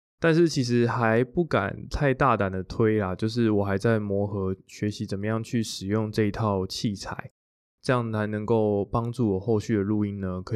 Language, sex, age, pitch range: Chinese, male, 20-39, 100-115 Hz